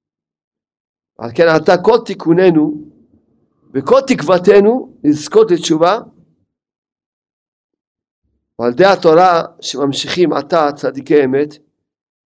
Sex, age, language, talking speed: male, 50-69, Hebrew, 80 wpm